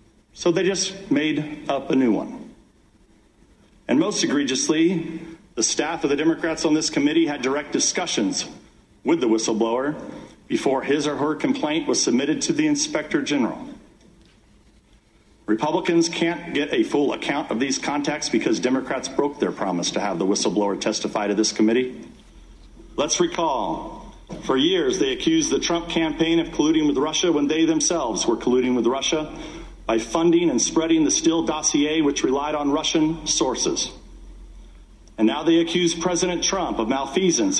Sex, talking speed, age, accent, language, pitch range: male, 155 wpm, 50-69, American, English, 140-185 Hz